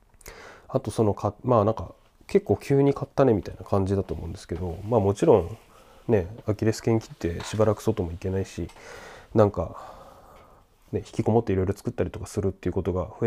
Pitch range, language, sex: 90-115 Hz, Japanese, male